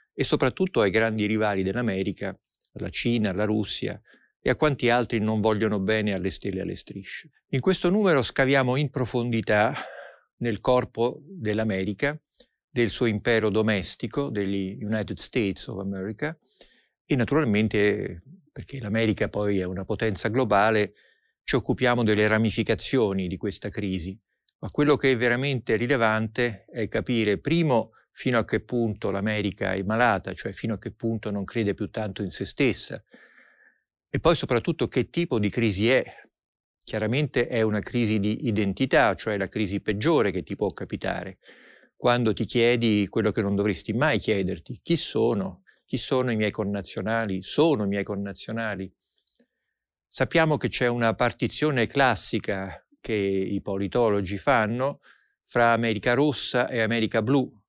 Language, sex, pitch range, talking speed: Italian, male, 105-125 Hz, 150 wpm